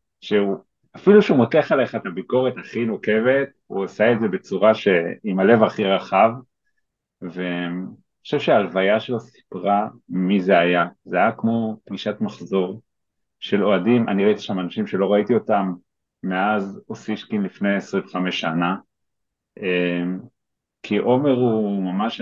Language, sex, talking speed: Hebrew, male, 140 wpm